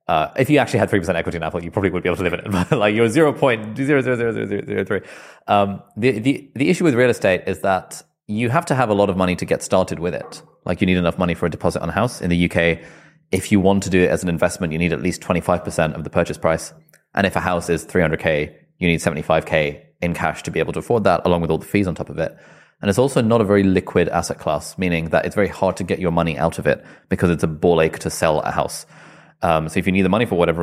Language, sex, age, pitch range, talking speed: English, male, 20-39, 85-110 Hz, 275 wpm